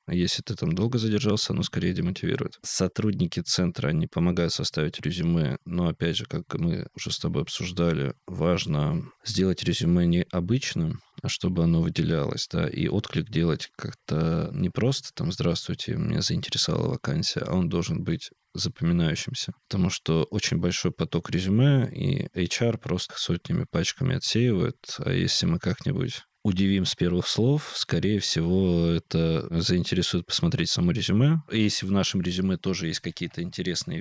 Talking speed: 145 wpm